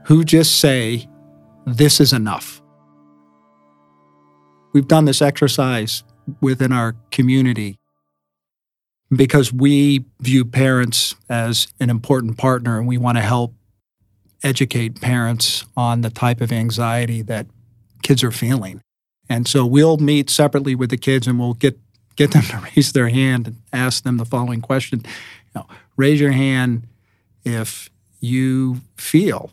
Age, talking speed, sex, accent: 50-69, 135 wpm, male, American